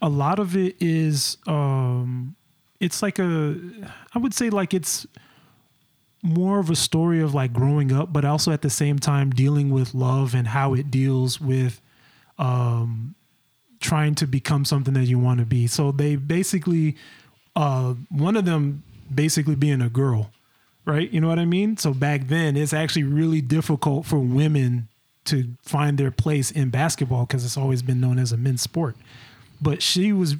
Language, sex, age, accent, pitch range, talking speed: English, male, 30-49, American, 130-160 Hz, 180 wpm